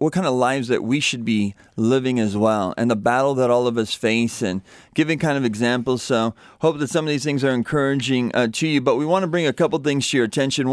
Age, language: 30-49, English